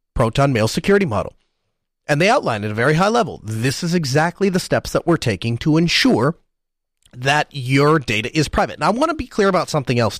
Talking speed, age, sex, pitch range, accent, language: 210 wpm, 30-49, male, 125-170 Hz, American, English